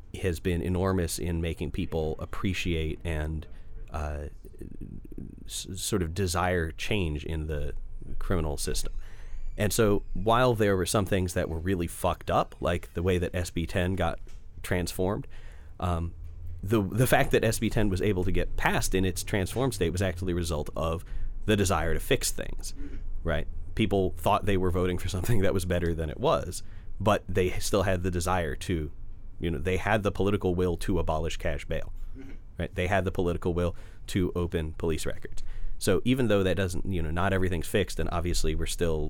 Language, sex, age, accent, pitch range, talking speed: English, male, 30-49, American, 80-95 Hz, 180 wpm